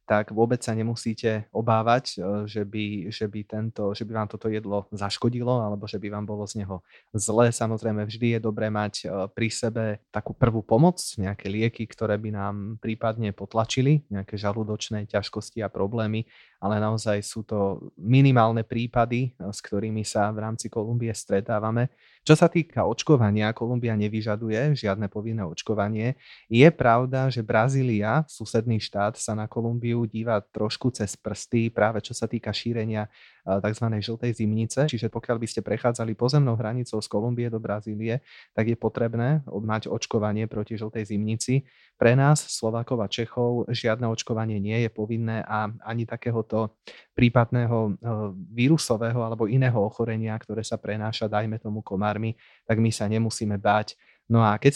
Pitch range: 105-120 Hz